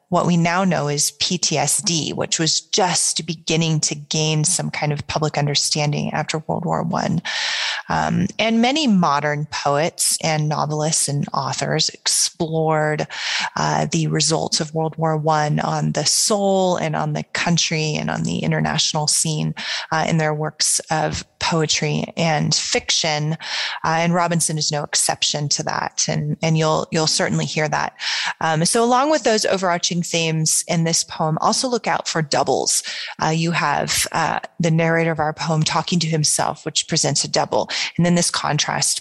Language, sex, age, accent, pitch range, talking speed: English, female, 30-49, American, 150-170 Hz, 165 wpm